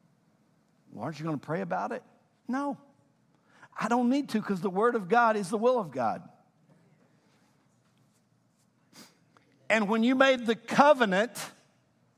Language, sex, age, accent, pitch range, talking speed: English, male, 60-79, American, 155-230 Hz, 145 wpm